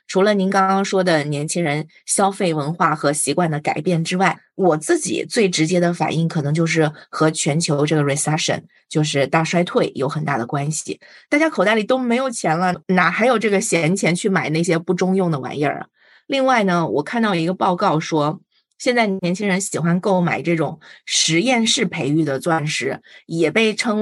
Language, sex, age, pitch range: Chinese, female, 20-39, 155-195 Hz